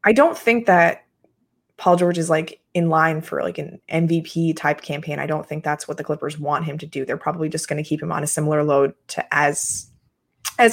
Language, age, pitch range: English, 20-39, 155-175 Hz